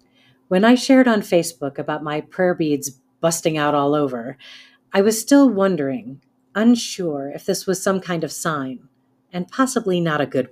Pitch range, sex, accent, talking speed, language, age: 140-200 Hz, female, American, 170 wpm, English, 40-59